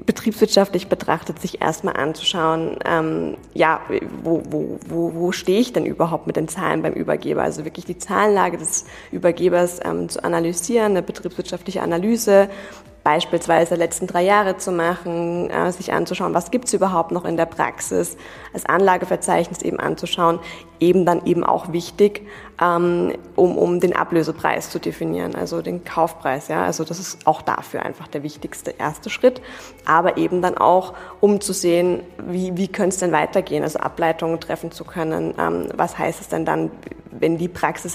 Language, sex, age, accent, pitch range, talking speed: German, female, 20-39, German, 165-190 Hz, 165 wpm